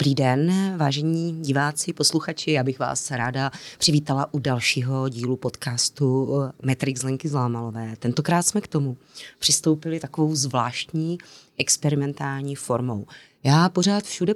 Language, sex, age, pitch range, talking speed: Czech, female, 30-49, 130-155 Hz, 120 wpm